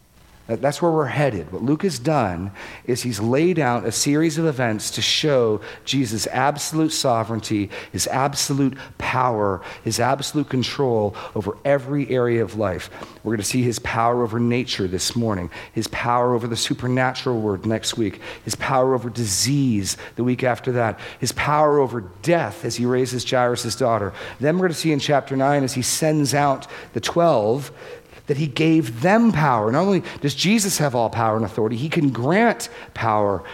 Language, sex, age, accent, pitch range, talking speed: English, male, 40-59, American, 110-140 Hz, 175 wpm